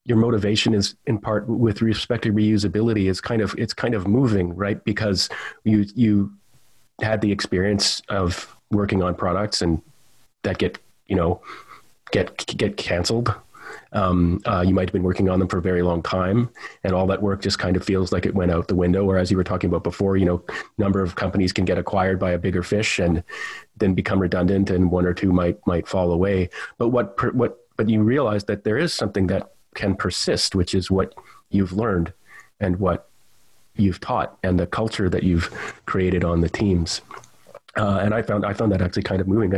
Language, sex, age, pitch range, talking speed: English, male, 30-49, 90-105 Hz, 205 wpm